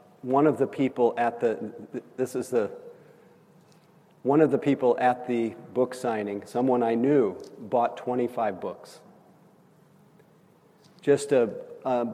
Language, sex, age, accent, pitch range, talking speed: English, male, 50-69, American, 125-170 Hz, 130 wpm